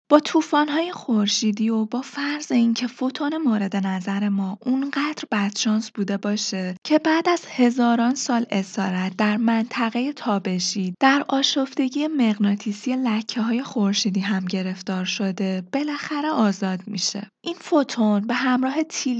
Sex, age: female, 20-39